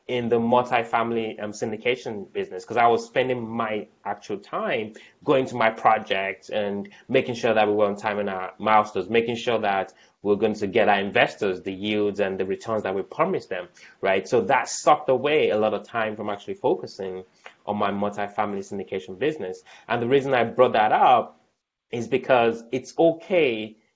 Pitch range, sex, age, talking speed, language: 105-130 Hz, male, 20-39, 185 wpm, English